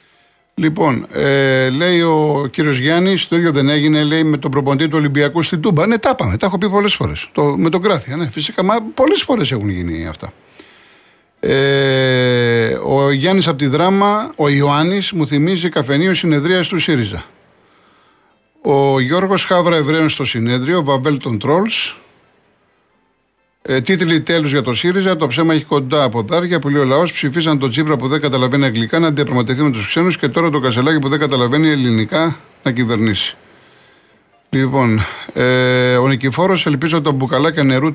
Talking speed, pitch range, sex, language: 170 wpm, 130-165 Hz, male, Greek